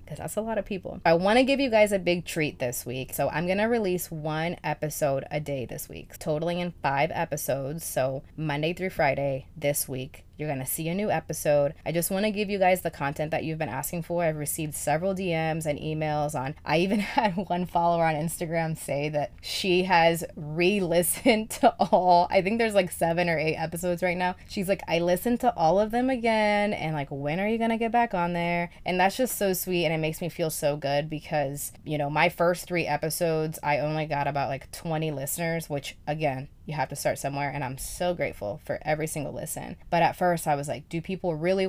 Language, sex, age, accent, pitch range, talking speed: English, female, 20-39, American, 145-180 Hz, 230 wpm